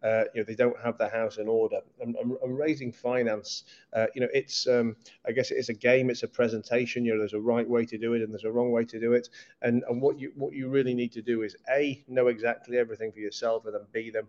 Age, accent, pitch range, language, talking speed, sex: 30-49, British, 115-125 Hz, English, 270 wpm, male